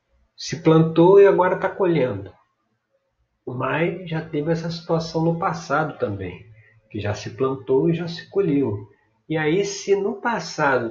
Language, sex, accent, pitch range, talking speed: Portuguese, male, Brazilian, 130-180 Hz, 150 wpm